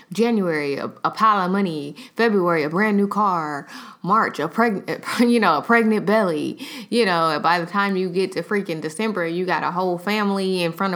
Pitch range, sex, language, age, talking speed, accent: 160-205 Hz, female, English, 20-39, 190 wpm, American